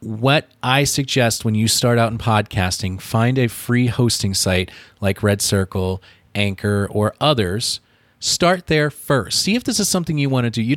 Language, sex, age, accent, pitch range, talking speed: English, male, 30-49, American, 100-135 Hz, 185 wpm